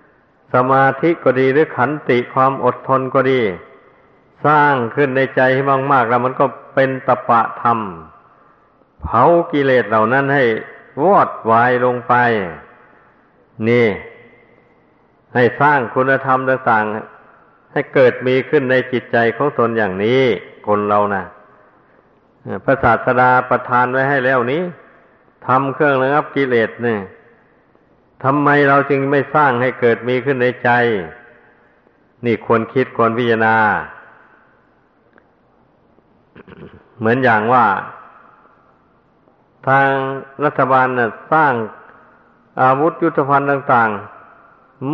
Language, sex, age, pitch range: Thai, male, 60-79, 125-140 Hz